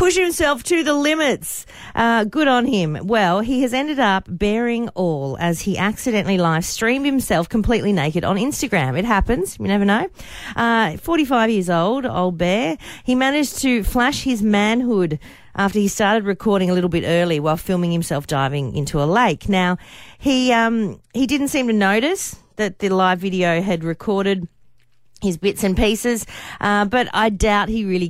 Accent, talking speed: Australian, 175 wpm